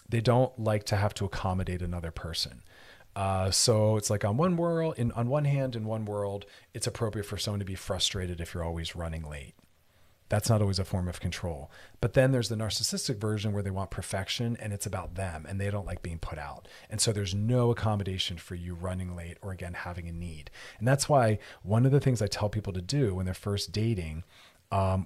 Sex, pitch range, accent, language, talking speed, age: male, 90-115 Hz, American, English, 225 wpm, 40-59